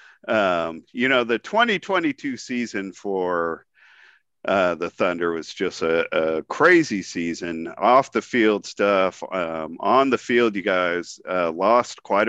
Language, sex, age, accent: English, male, 50-69, American